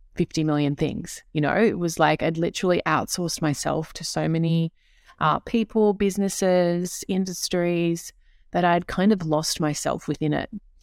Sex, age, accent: female, 20-39, Australian